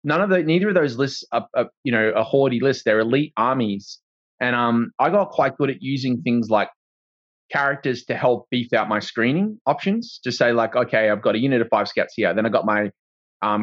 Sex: male